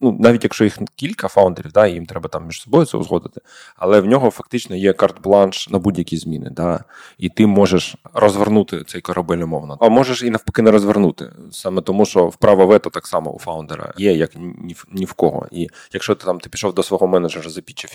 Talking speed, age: 210 wpm, 20-39